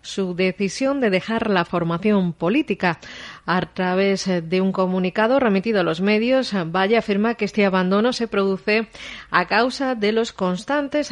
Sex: female